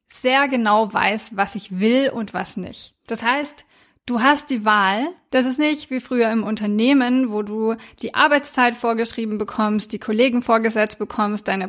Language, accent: German, German